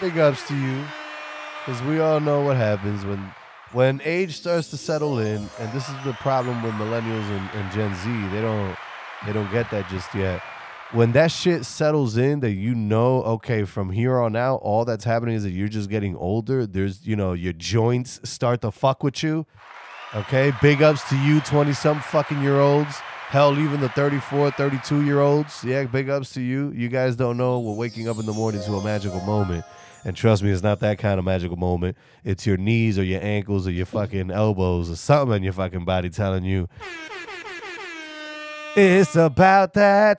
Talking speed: 195 wpm